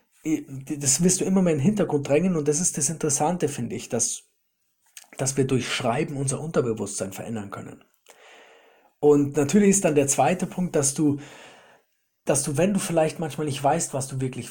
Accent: German